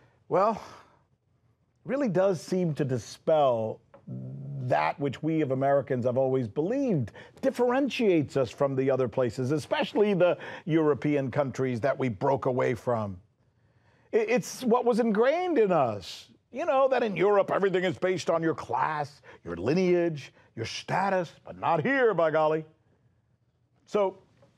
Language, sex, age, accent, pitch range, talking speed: English, male, 50-69, American, 125-195 Hz, 140 wpm